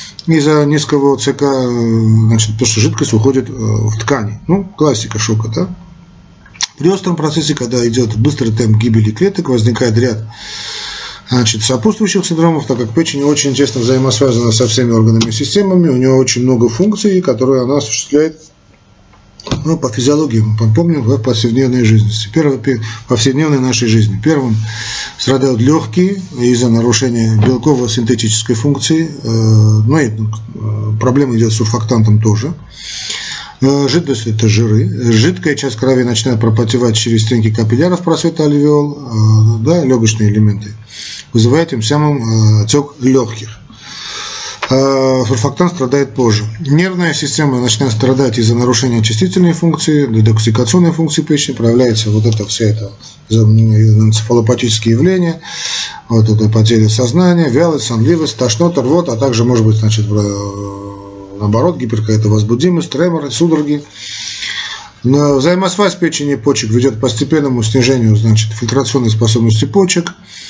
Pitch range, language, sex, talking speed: 110-145 Hz, Russian, male, 130 wpm